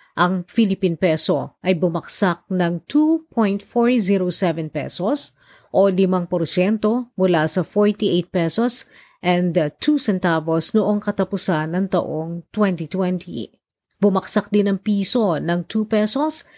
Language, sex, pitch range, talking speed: Filipino, female, 170-210 Hz, 100 wpm